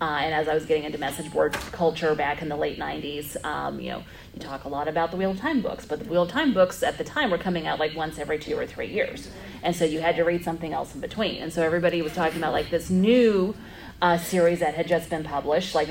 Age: 30-49